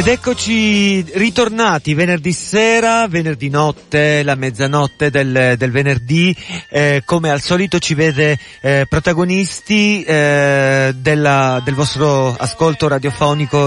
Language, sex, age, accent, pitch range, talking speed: Italian, male, 40-59, native, 140-180 Hz, 115 wpm